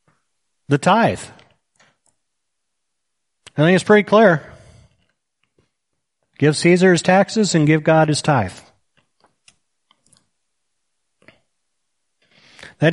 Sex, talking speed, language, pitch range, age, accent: male, 80 wpm, English, 130-170 Hz, 40-59, American